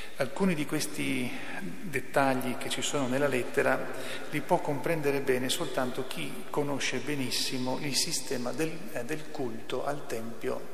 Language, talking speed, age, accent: Italian, 135 wpm, 40-59, native